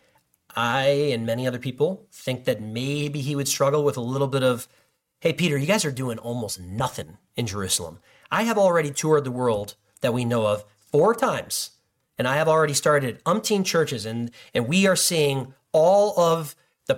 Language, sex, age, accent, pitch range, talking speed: English, male, 40-59, American, 115-150 Hz, 185 wpm